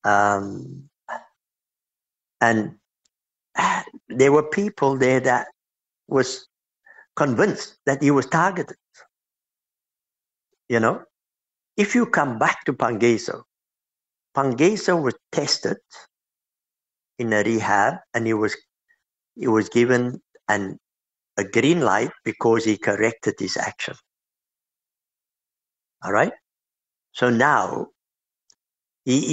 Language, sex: English, male